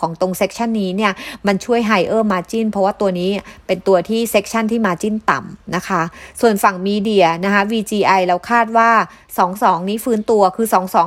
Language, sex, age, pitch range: English, female, 30-49, 180-215 Hz